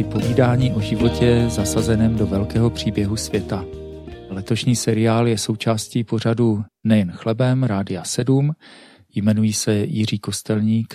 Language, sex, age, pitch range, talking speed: Czech, male, 40-59, 105-125 Hz, 115 wpm